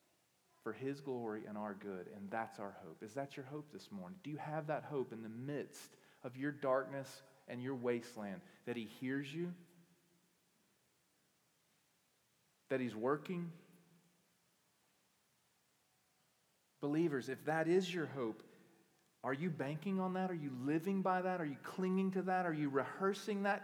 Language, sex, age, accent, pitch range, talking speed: English, male, 40-59, American, 135-180 Hz, 155 wpm